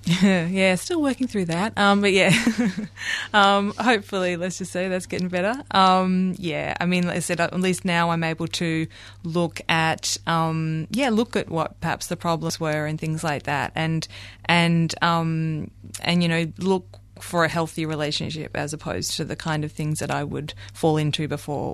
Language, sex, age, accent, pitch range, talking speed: English, female, 20-39, Australian, 155-180 Hz, 190 wpm